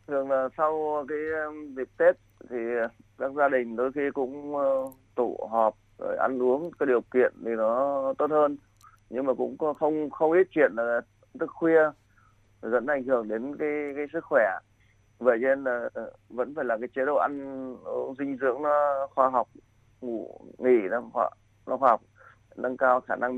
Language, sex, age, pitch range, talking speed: Vietnamese, male, 20-39, 105-140 Hz, 170 wpm